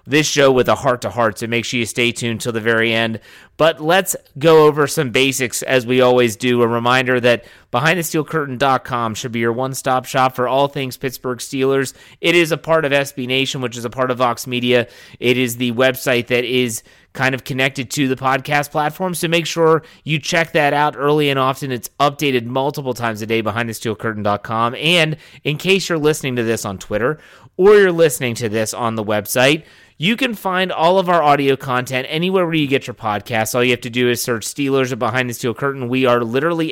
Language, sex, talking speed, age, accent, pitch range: English, male, 215 wpm, 30-49, American, 120-145 Hz